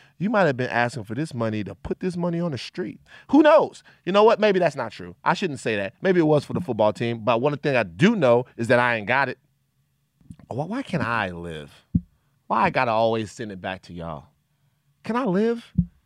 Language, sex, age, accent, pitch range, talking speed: English, male, 30-49, American, 120-170 Hz, 240 wpm